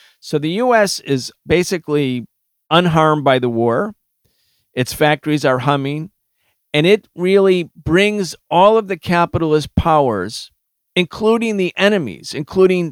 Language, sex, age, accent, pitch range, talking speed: English, male, 50-69, American, 135-170 Hz, 120 wpm